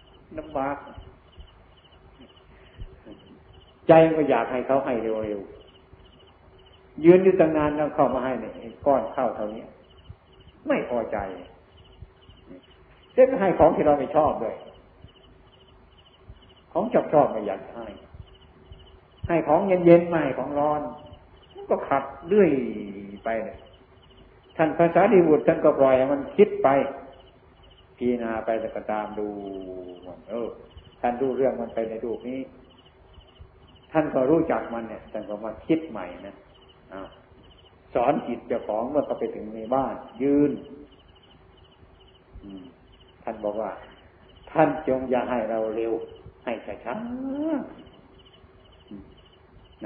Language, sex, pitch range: Thai, male, 95-145 Hz